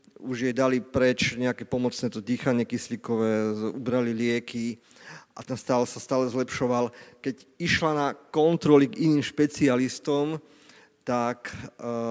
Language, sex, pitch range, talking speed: Slovak, male, 115-135 Hz, 120 wpm